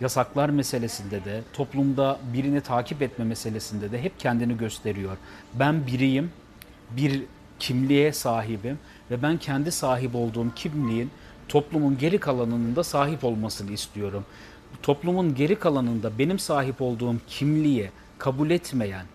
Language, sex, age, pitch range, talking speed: Turkish, male, 40-59, 120-155 Hz, 120 wpm